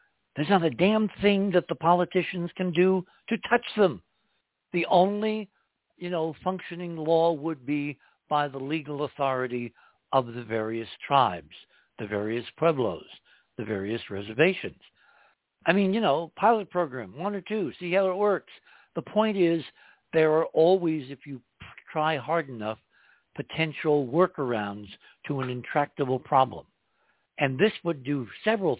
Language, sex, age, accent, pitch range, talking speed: English, male, 60-79, American, 130-175 Hz, 145 wpm